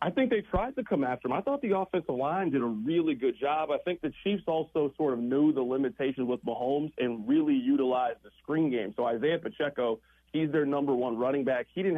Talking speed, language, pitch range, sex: 235 wpm, English, 130-190 Hz, male